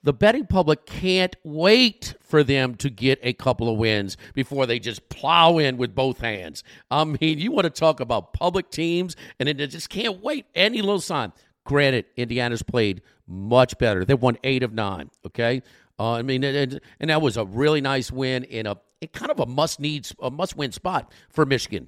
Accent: American